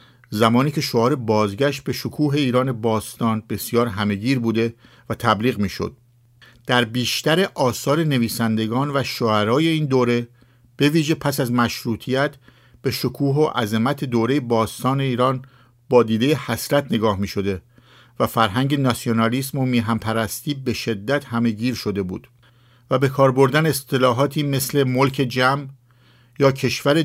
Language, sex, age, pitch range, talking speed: English, male, 50-69, 120-140 Hz, 130 wpm